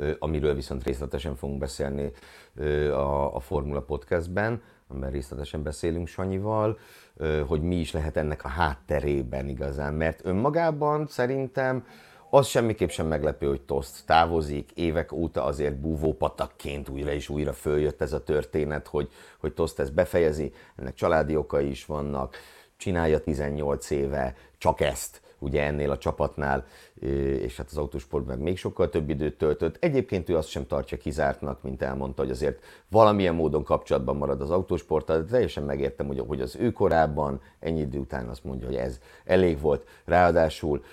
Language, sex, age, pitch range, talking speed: Hungarian, male, 50-69, 70-90 Hz, 150 wpm